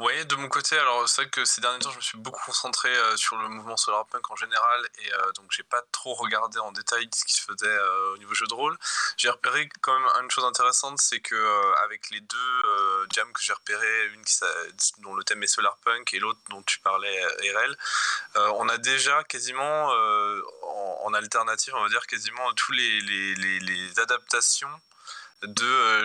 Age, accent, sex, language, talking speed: 20-39, French, male, French, 220 wpm